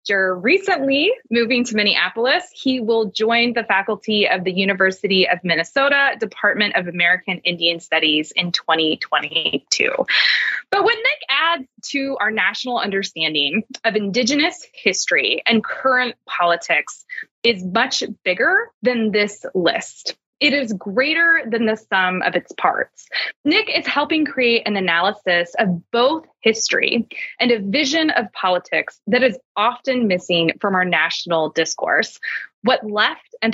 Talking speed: 135 wpm